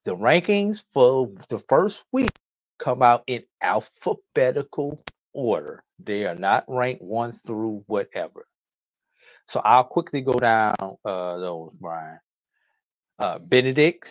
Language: English